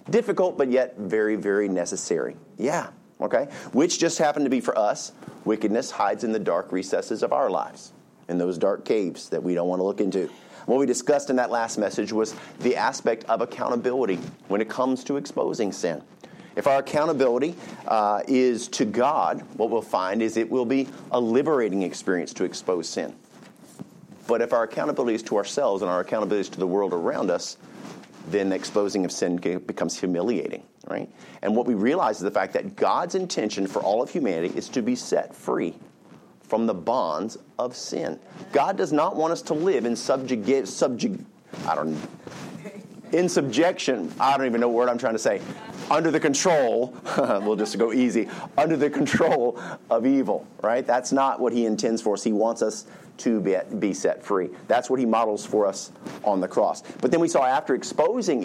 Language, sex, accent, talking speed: English, male, American, 195 wpm